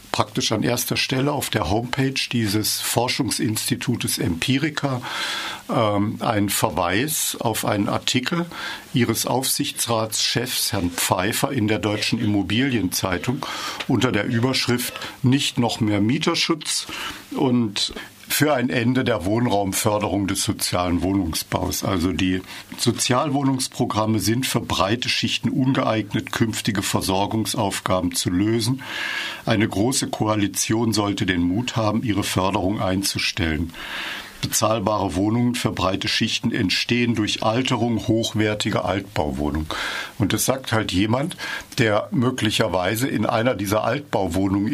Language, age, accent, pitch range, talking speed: German, 50-69, German, 100-125 Hz, 110 wpm